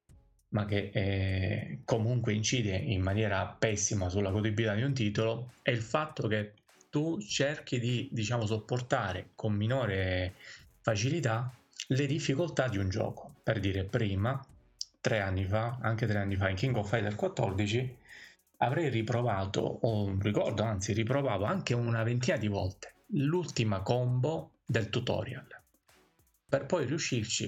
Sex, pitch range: male, 105-130 Hz